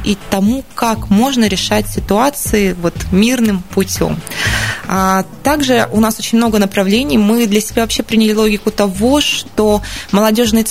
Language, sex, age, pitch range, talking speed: Russian, female, 20-39, 190-225 Hz, 140 wpm